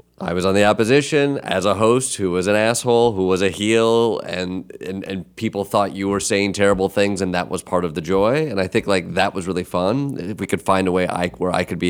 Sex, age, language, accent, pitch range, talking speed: male, 30-49, English, American, 90-105 Hz, 260 wpm